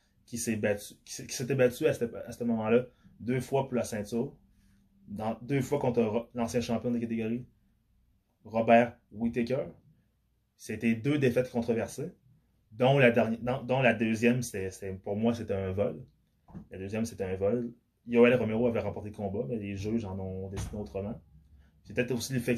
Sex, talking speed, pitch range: male, 175 wpm, 105-125 Hz